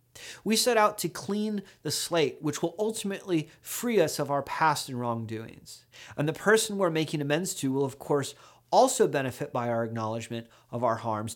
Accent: American